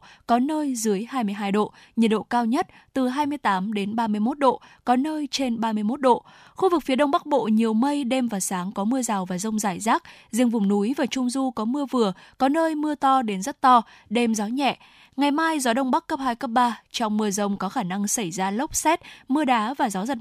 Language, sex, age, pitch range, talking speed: Vietnamese, female, 10-29, 210-265 Hz, 260 wpm